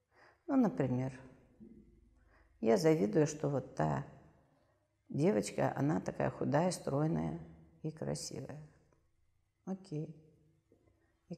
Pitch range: 115-160 Hz